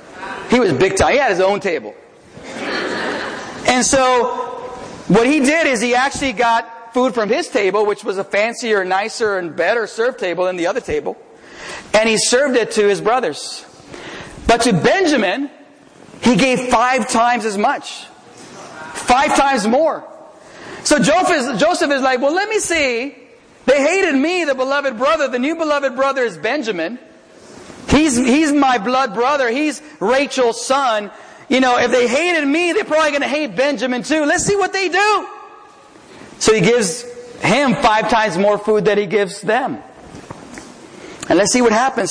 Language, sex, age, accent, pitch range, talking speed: English, male, 40-59, American, 220-290 Hz, 165 wpm